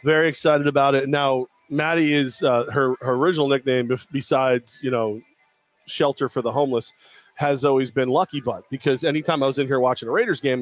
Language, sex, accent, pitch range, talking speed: English, male, American, 120-175 Hz, 205 wpm